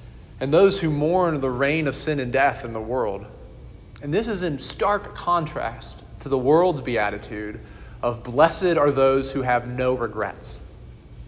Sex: male